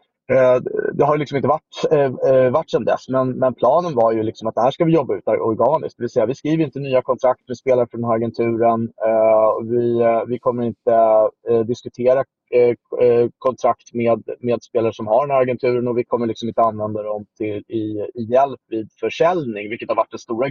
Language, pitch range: Swedish, 115-140 Hz